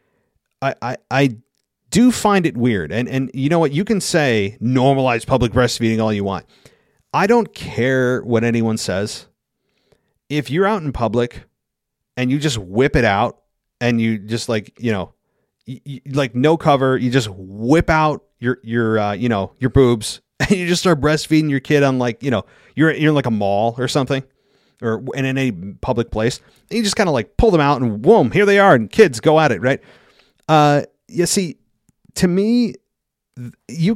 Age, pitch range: 30-49, 115-160 Hz